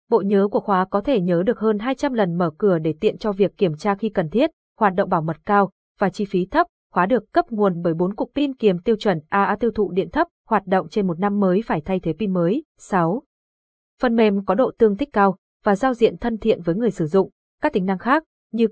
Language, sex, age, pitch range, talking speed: Vietnamese, female, 20-39, 180-235 Hz, 255 wpm